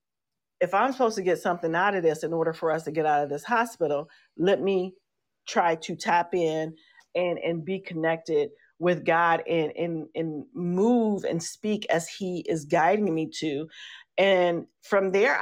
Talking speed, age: 180 wpm, 40-59